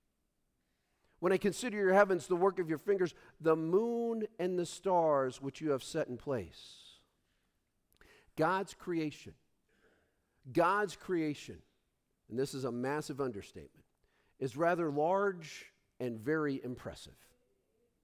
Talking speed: 125 wpm